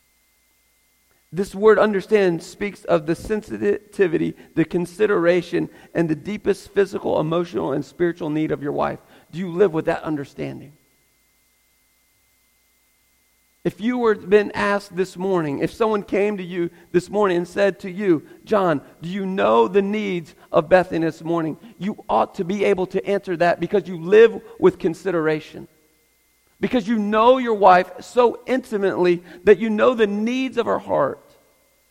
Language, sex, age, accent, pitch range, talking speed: English, male, 40-59, American, 160-210 Hz, 155 wpm